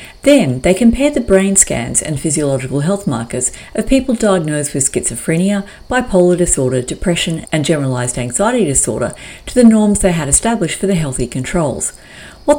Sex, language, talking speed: female, English, 155 wpm